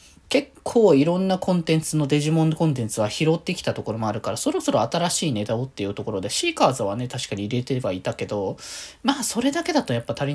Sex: male